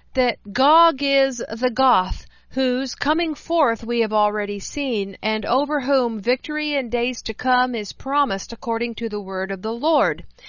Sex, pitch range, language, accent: female, 215-270 Hz, English, American